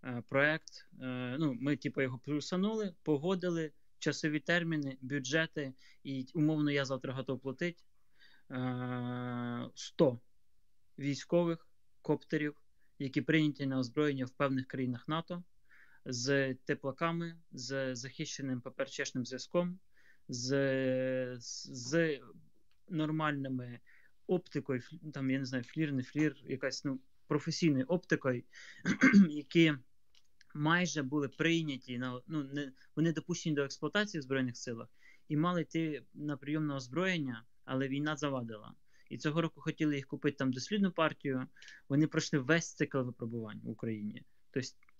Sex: male